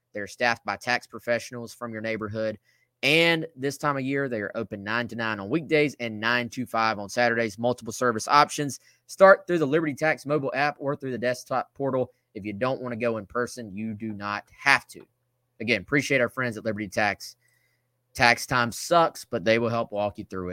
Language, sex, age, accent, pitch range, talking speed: English, male, 20-39, American, 110-130 Hz, 210 wpm